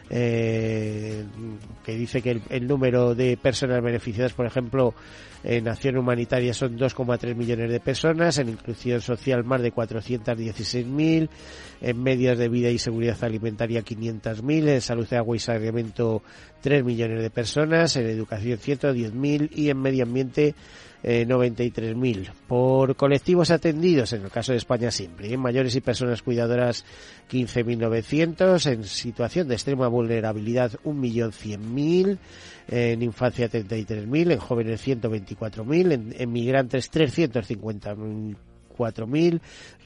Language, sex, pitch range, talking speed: Spanish, male, 115-135 Hz, 130 wpm